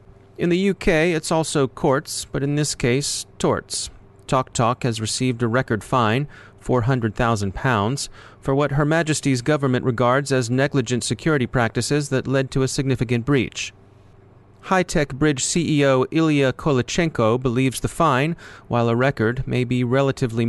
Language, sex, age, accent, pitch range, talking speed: English, male, 30-49, American, 110-135 Hz, 145 wpm